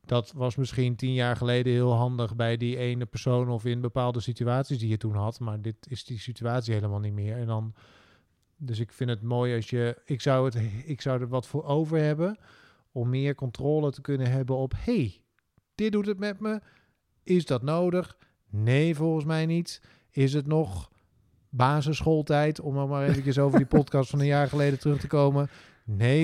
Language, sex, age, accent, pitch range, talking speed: Dutch, male, 40-59, Dutch, 120-150 Hz, 195 wpm